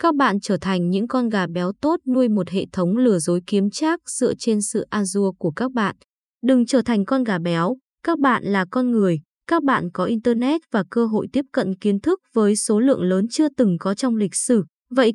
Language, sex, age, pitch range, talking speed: Vietnamese, female, 20-39, 185-255 Hz, 230 wpm